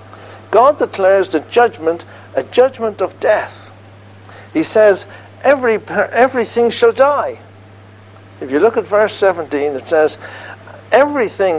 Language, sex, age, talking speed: English, male, 60-79, 120 wpm